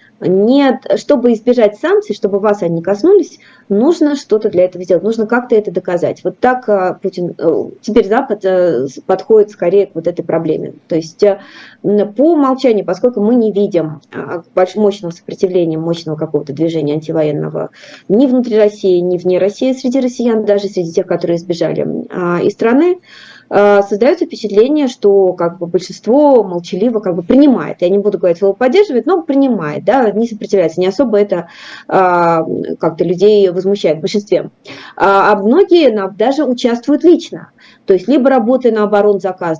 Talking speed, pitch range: 150 wpm, 180-240 Hz